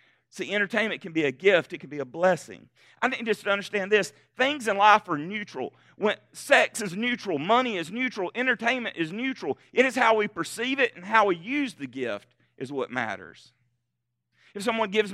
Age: 40-59